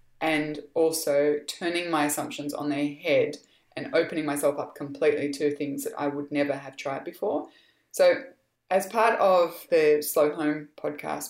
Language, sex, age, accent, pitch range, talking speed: English, female, 20-39, Australian, 145-200 Hz, 160 wpm